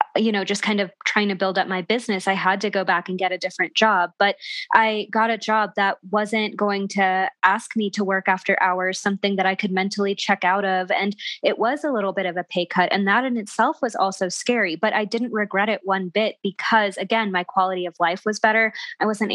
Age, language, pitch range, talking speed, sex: 20-39, English, 190-220 Hz, 240 wpm, female